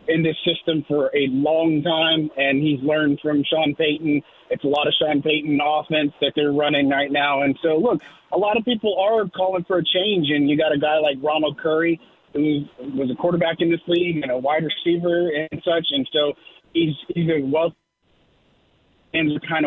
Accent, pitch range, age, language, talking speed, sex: American, 150-170 Hz, 30-49, English, 200 wpm, male